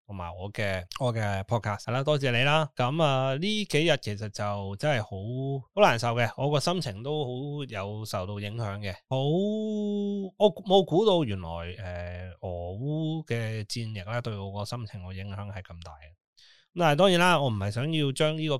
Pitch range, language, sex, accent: 105-140 Hz, Chinese, male, native